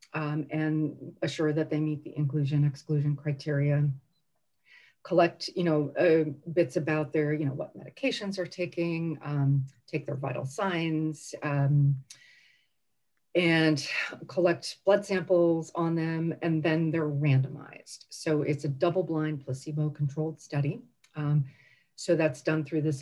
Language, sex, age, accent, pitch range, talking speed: English, female, 40-59, American, 140-165 Hz, 135 wpm